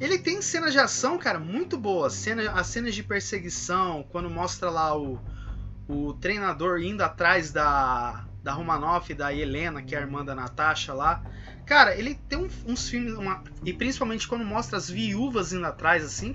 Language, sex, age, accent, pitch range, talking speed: Portuguese, male, 20-39, Brazilian, 150-235 Hz, 175 wpm